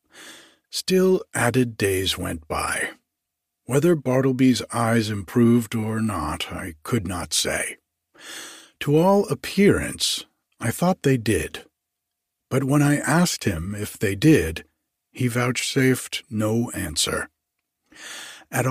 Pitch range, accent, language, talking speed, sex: 105-140 Hz, American, English, 110 wpm, male